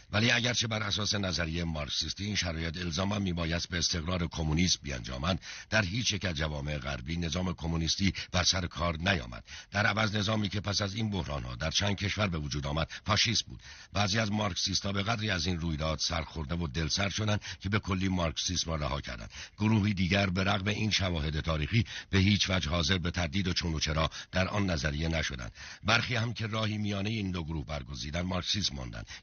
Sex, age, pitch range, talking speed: male, 60-79, 80-105 Hz, 195 wpm